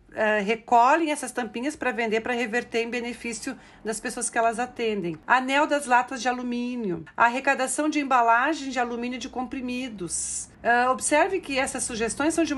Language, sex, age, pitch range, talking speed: Portuguese, female, 50-69, 230-290 Hz, 155 wpm